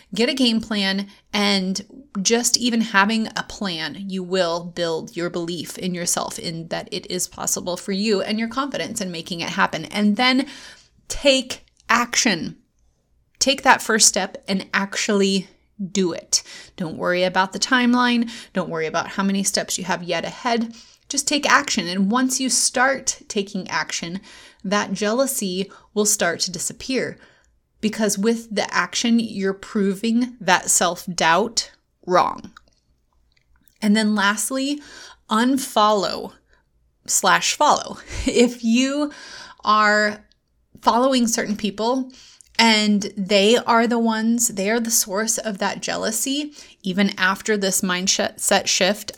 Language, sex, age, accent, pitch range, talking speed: English, female, 30-49, American, 190-235 Hz, 135 wpm